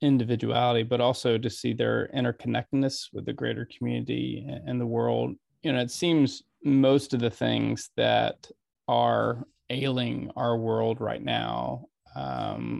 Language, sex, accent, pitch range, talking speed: English, male, American, 110-125 Hz, 140 wpm